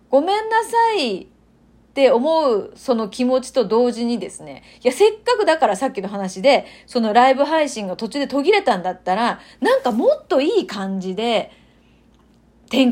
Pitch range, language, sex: 225-360 Hz, Japanese, female